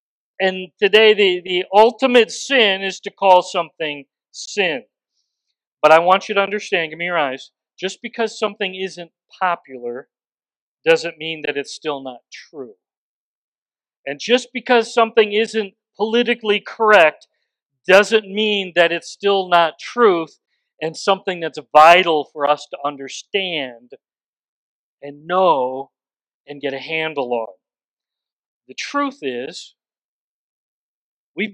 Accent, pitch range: American, 165-220 Hz